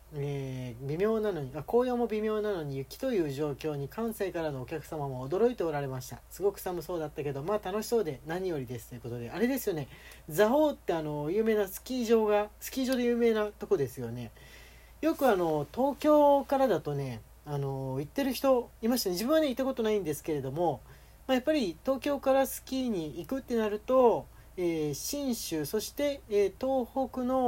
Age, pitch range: 40-59, 145-240 Hz